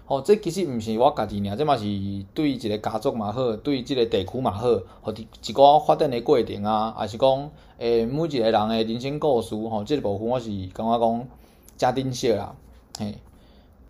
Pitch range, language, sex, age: 110-140 Hz, Chinese, male, 20-39